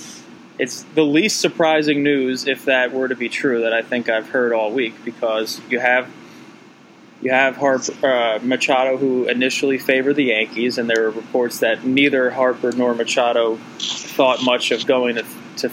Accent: American